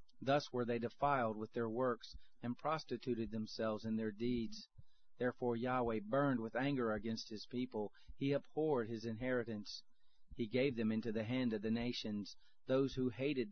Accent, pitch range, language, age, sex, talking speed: American, 115-135 Hz, English, 40-59, male, 165 wpm